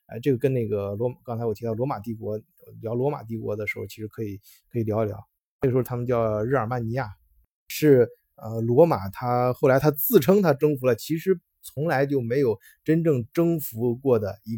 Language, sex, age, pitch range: Chinese, male, 20-39, 110-145 Hz